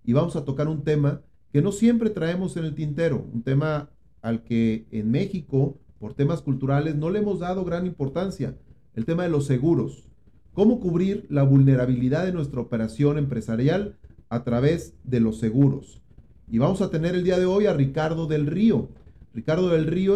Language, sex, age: Spanish, male, 40-59